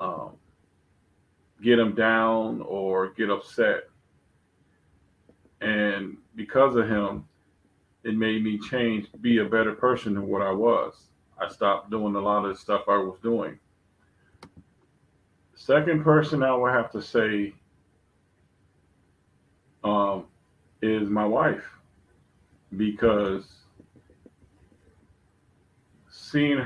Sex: male